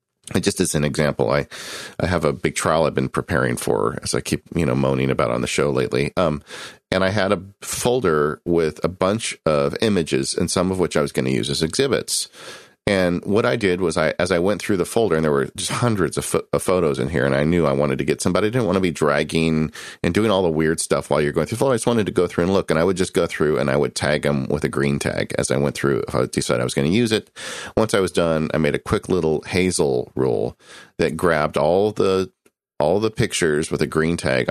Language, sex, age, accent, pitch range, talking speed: English, male, 40-59, American, 70-95 Hz, 275 wpm